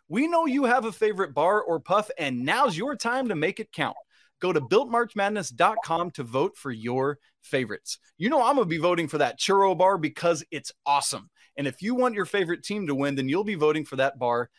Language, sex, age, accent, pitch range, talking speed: English, male, 30-49, American, 155-240 Hz, 225 wpm